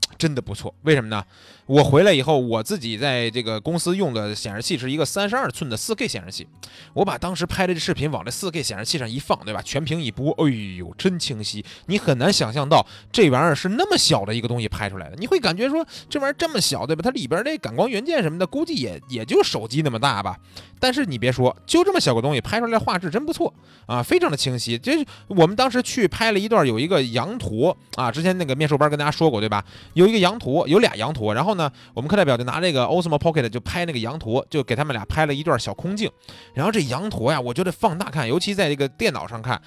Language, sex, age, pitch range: Chinese, male, 20-39, 115-190 Hz